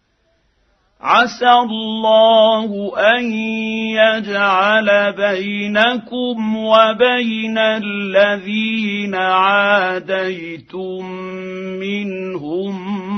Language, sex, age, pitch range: Arabic, male, 50-69, 195-225 Hz